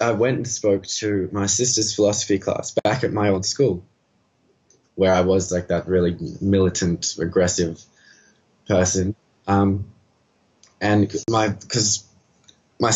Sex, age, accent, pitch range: male, 20-39, Australian, 95-110 Hz